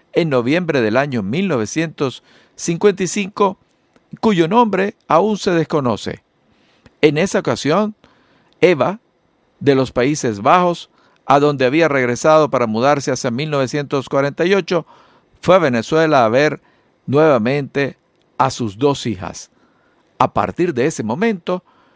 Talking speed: 110 wpm